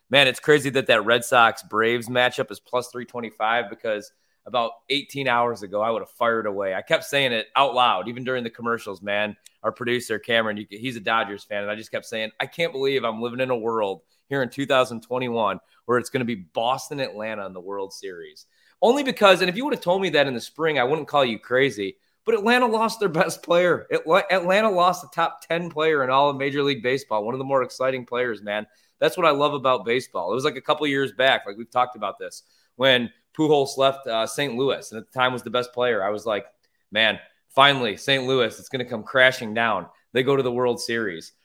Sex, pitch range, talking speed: male, 115-145 Hz, 230 wpm